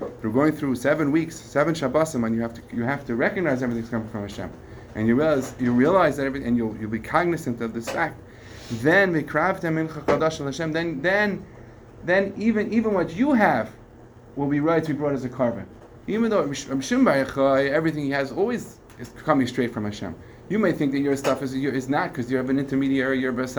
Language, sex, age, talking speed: English, male, 30-49, 215 wpm